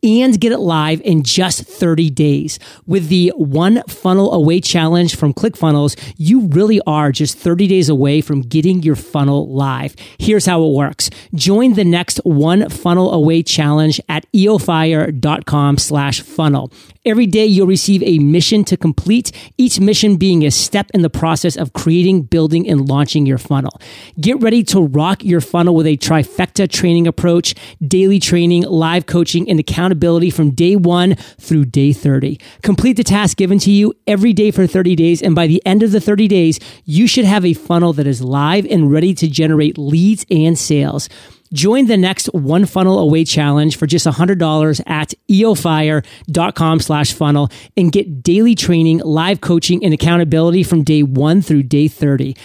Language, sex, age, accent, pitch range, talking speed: English, male, 40-59, American, 150-195 Hz, 170 wpm